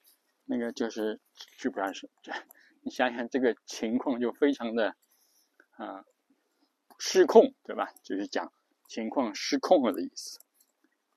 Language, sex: Chinese, male